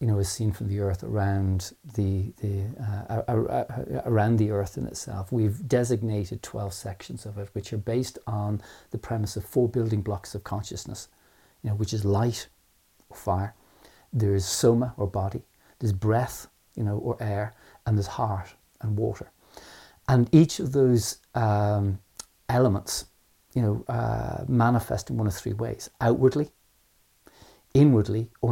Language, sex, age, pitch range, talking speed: English, male, 40-59, 105-120 Hz, 160 wpm